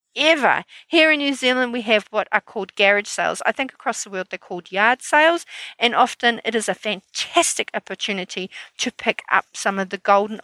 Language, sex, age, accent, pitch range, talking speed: English, female, 40-59, Australian, 190-245 Hz, 200 wpm